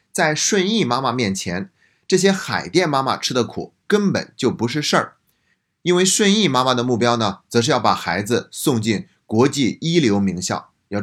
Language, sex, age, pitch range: Chinese, male, 20-39, 100-130 Hz